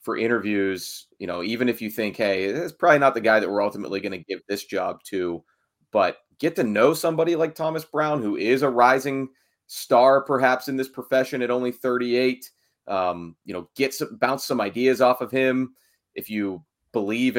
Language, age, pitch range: English, 30-49, 100-130 Hz